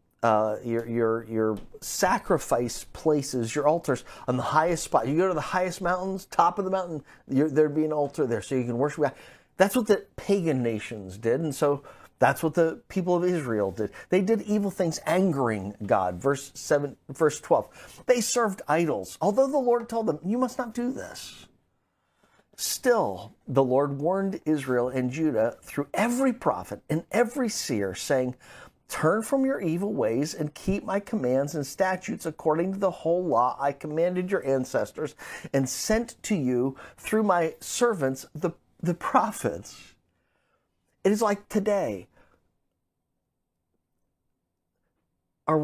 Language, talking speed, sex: English, 160 wpm, male